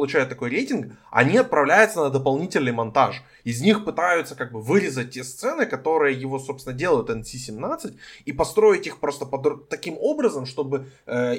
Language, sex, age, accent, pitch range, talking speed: Ukrainian, male, 20-39, native, 130-165 Hz, 160 wpm